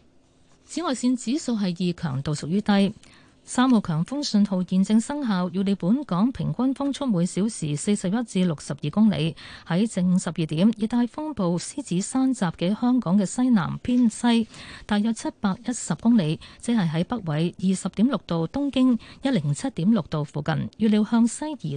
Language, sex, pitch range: Chinese, female, 165-230 Hz